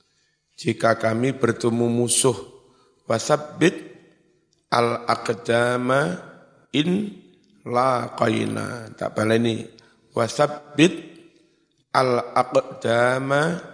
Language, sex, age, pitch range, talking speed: Indonesian, male, 50-69, 115-150 Hz, 55 wpm